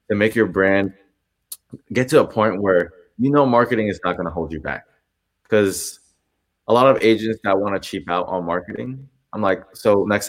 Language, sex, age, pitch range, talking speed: English, male, 20-39, 85-105 Hz, 205 wpm